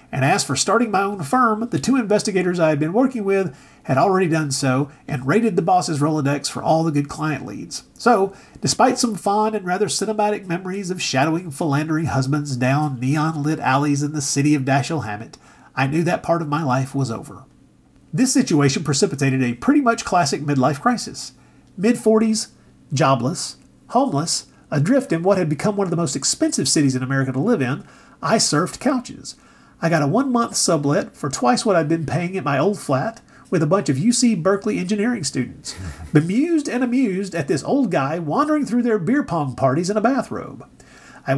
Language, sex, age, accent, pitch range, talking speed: English, male, 40-59, American, 145-215 Hz, 190 wpm